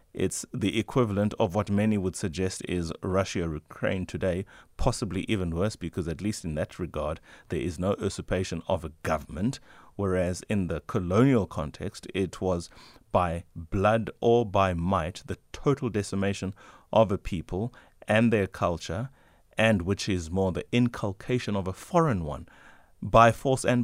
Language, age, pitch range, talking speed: English, 30-49, 90-115 Hz, 160 wpm